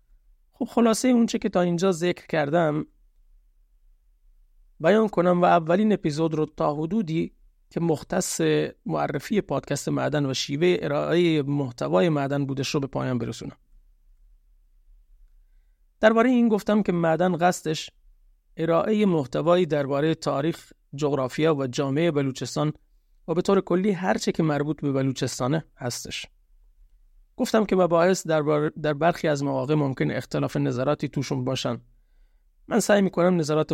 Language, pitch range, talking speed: Persian, 135-175 Hz, 130 wpm